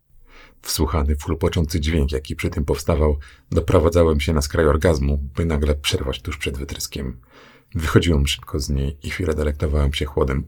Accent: native